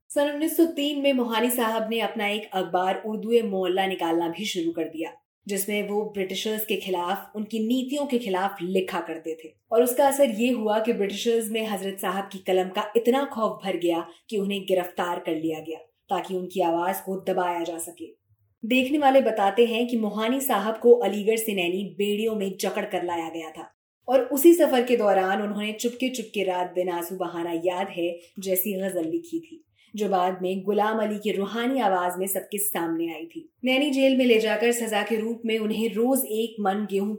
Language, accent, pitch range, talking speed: Hindi, native, 180-230 Hz, 195 wpm